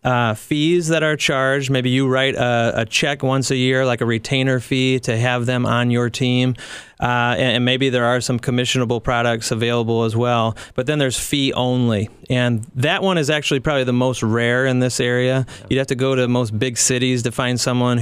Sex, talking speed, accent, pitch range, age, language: male, 215 wpm, American, 115-130 Hz, 30-49, English